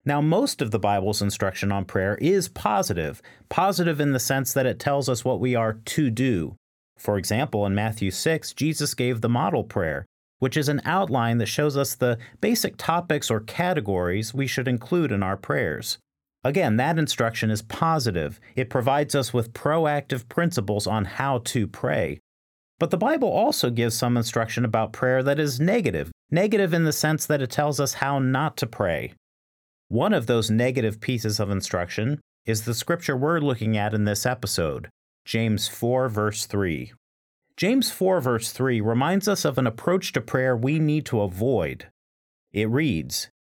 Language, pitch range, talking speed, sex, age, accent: English, 105-145 Hz, 175 wpm, male, 40-59, American